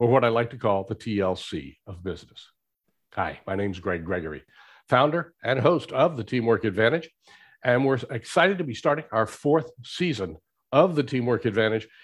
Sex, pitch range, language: male, 120-170 Hz, English